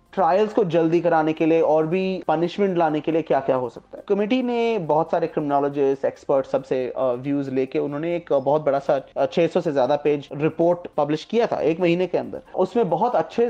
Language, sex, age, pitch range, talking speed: Hindi, male, 30-49, 140-195 Hz, 200 wpm